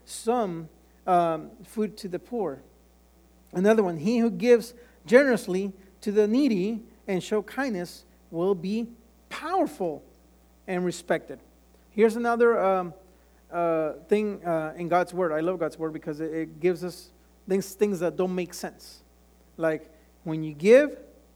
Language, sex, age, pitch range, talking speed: English, male, 40-59, 150-200 Hz, 145 wpm